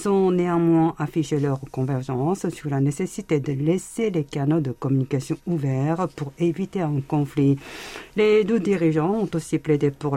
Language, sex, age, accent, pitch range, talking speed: French, female, 50-69, French, 140-165 Hz, 155 wpm